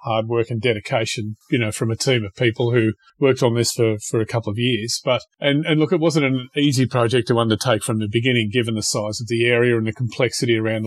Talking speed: 250 wpm